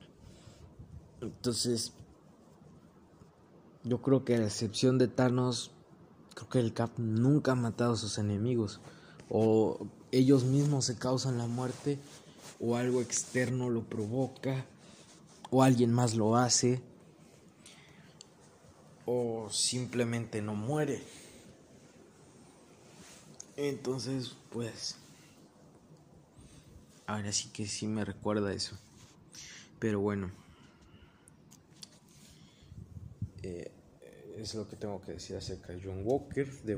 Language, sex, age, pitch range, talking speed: Spanish, male, 20-39, 105-130 Hz, 105 wpm